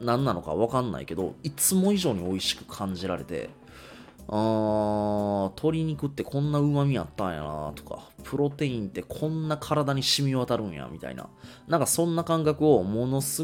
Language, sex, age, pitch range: Japanese, male, 20-39, 95-135 Hz